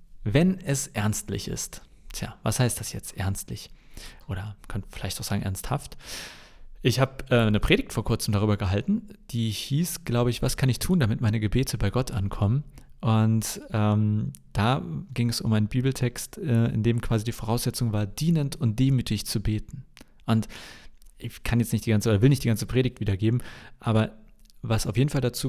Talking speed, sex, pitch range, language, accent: 185 wpm, male, 110-140 Hz, German, German